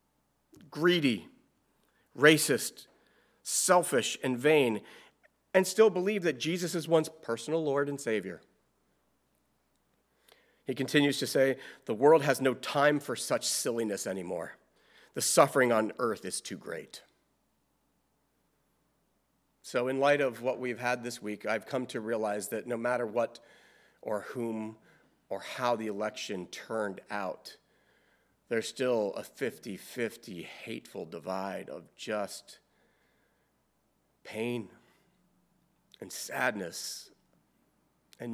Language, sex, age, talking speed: English, male, 40-59, 115 wpm